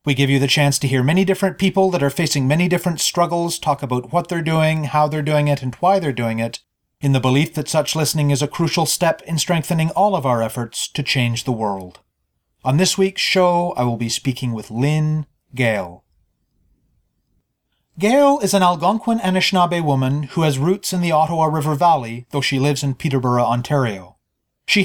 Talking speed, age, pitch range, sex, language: 200 wpm, 30-49, 130-180 Hz, male, English